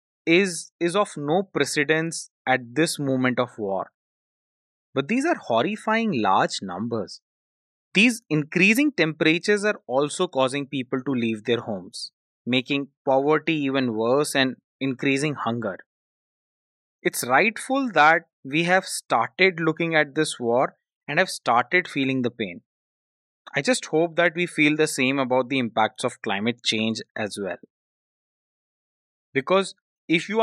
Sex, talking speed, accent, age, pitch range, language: male, 135 wpm, Indian, 20-39, 130-185 Hz, English